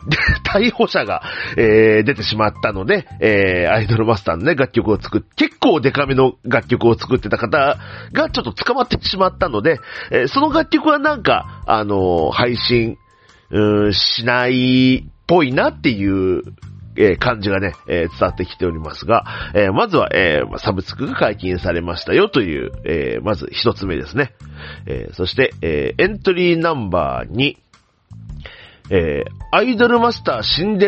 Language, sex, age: Japanese, male, 40-59